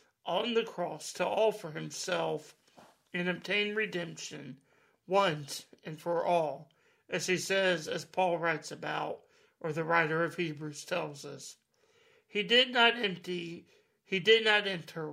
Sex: male